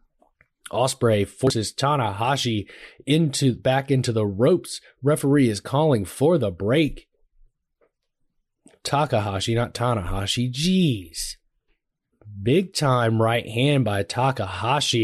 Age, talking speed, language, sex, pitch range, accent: 20-39, 95 wpm, English, male, 120-150 Hz, American